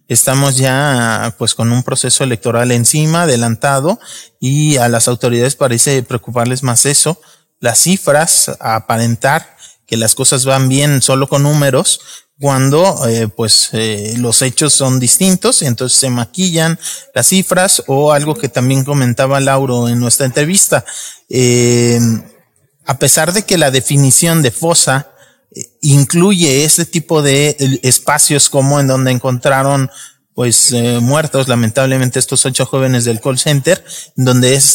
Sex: male